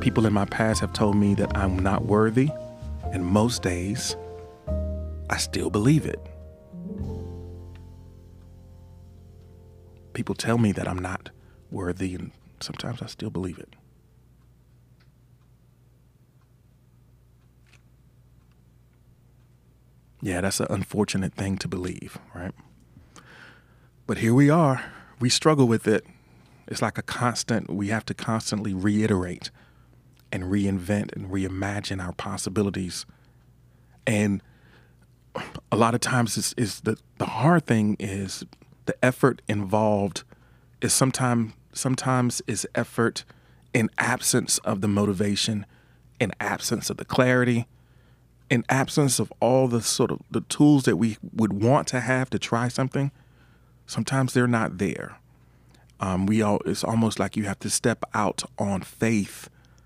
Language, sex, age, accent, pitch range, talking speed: English, male, 40-59, American, 95-125 Hz, 130 wpm